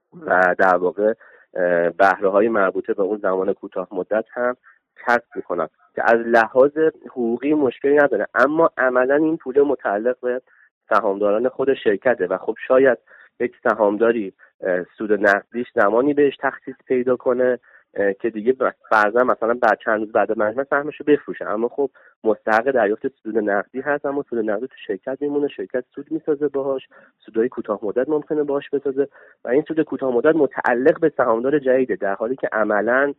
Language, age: Persian, 30-49